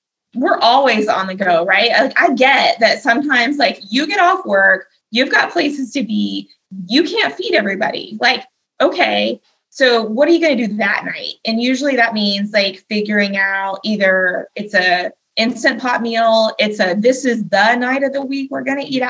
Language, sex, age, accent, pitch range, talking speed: English, female, 20-39, American, 205-255 Hz, 190 wpm